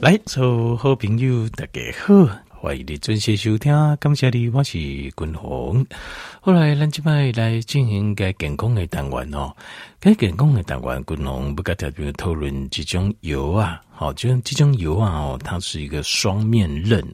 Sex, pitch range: male, 80-130 Hz